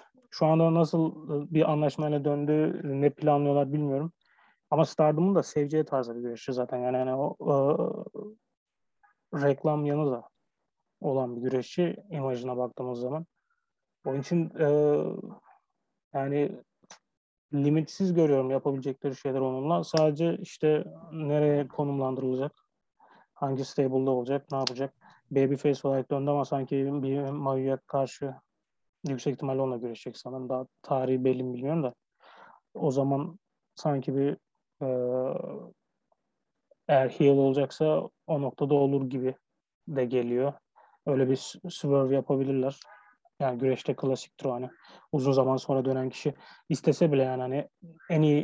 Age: 30-49